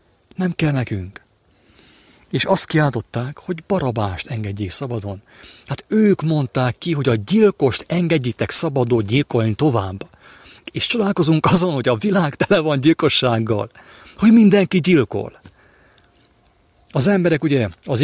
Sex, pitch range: male, 110-155 Hz